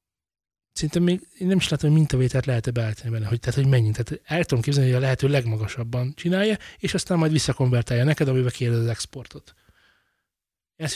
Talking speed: 180 wpm